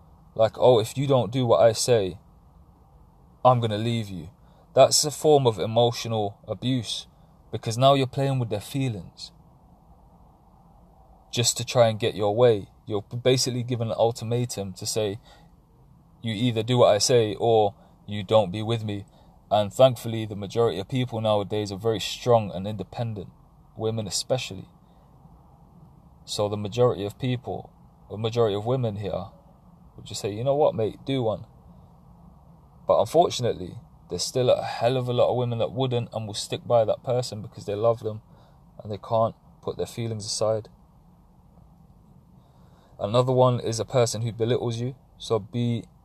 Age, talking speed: 20-39, 165 wpm